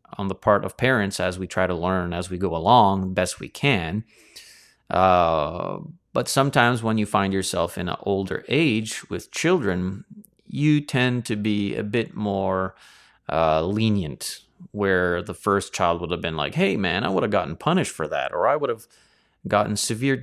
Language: English